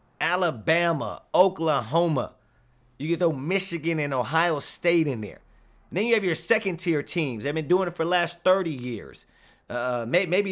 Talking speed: 160 wpm